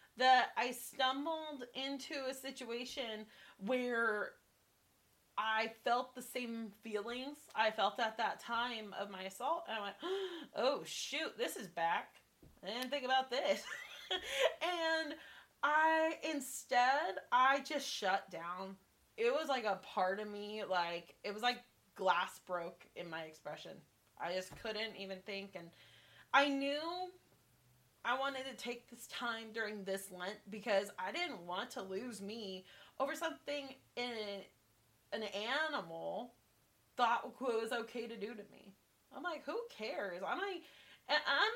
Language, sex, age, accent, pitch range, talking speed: English, female, 20-39, American, 195-265 Hz, 140 wpm